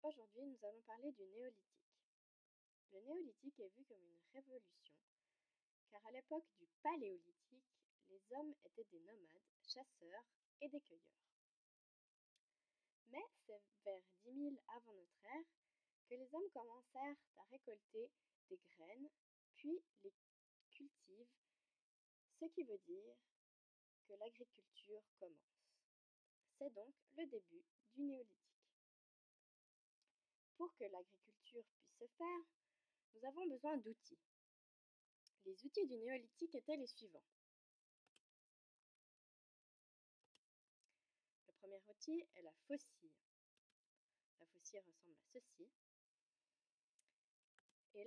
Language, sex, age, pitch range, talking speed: French, female, 20-39, 205-320 Hz, 110 wpm